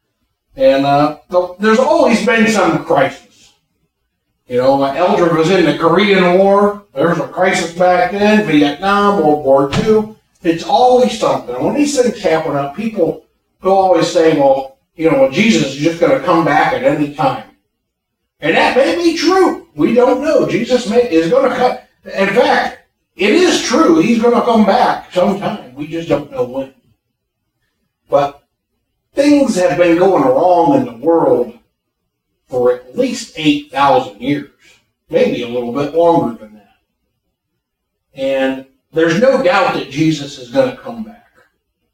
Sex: male